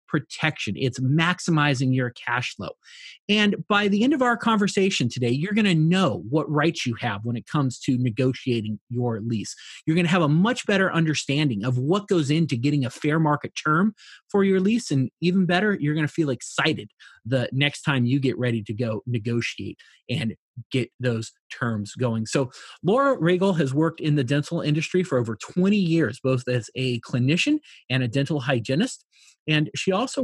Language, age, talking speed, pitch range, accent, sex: English, 30-49, 190 wpm, 125-180 Hz, American, male